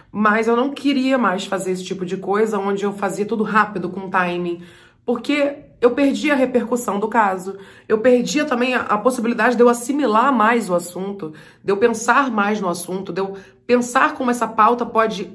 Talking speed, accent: 190 wpm, Brazilian